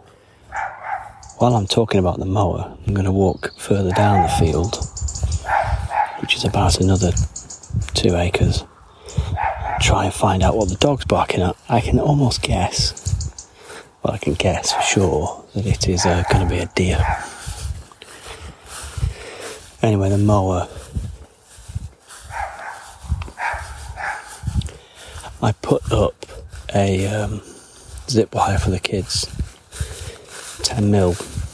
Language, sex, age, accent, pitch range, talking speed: English, male, 30-49, British, 90-105 Hz, 120 wpm